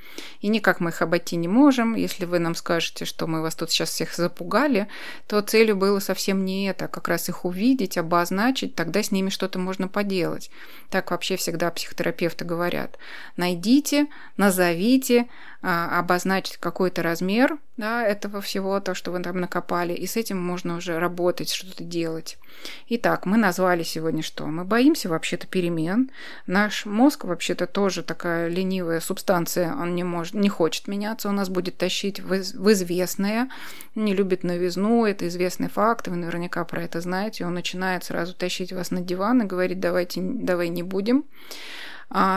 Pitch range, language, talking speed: 175-205 Hz, Russian, 160 wpm